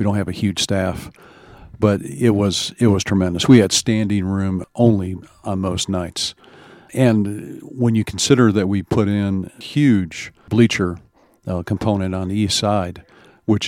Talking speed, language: 160 wpm, English